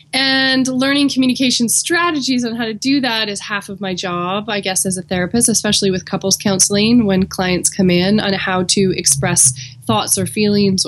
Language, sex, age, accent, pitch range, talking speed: English, female, 20-39, American, 175-215 Hz, 190 wpm